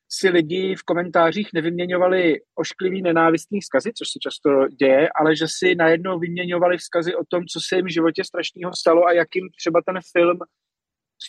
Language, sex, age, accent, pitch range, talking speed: Czech, male, 30-49, native, 160-185 Hz, 175 wpm